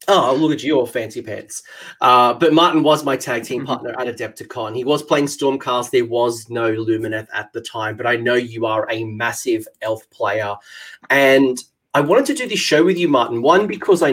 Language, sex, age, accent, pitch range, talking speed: English, male, 30-49, Australian, 115-150 Hz, 210 wpm